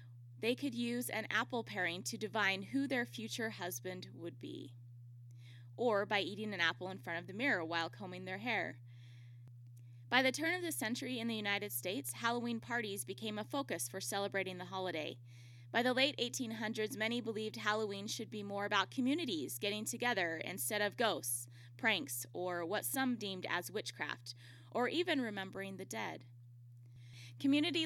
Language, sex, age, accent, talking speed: English, female, 20-39, American, 165 wpm